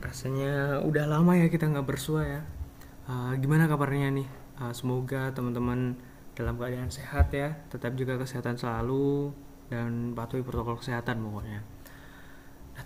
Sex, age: male, 20-39